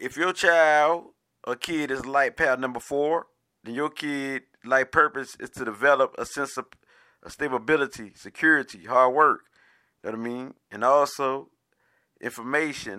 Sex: male